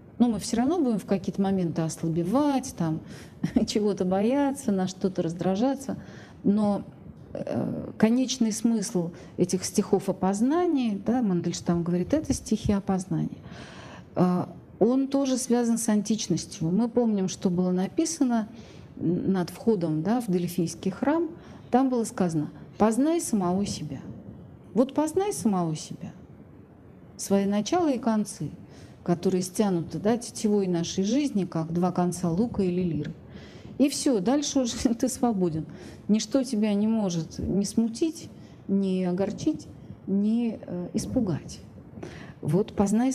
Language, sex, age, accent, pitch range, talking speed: Russian, female, 40-59, native, 180-245 Hz, 120 wpm